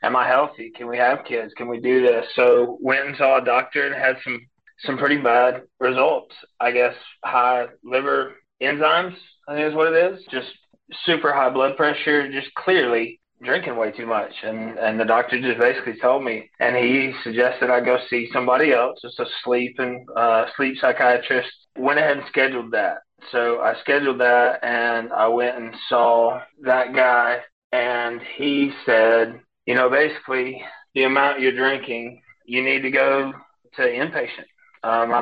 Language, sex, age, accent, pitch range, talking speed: English, male, 30-49, American, 120-135 Hz, 175 wpm